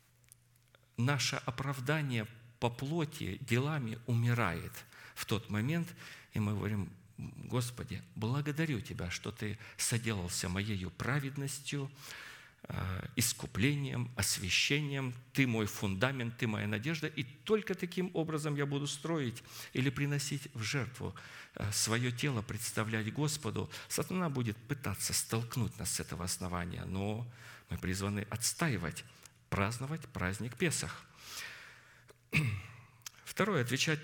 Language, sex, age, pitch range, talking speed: Russian, male, 50-69, 110-140 Hz, 105 wpm